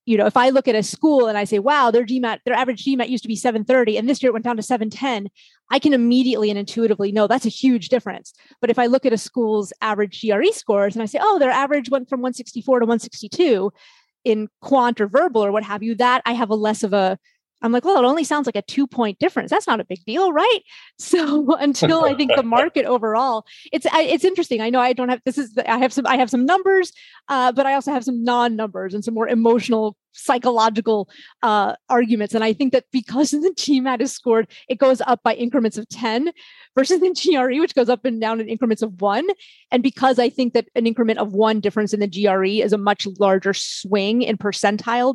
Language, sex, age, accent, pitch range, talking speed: English, female, 30-49, American, 220-270 Hz, 240 wpm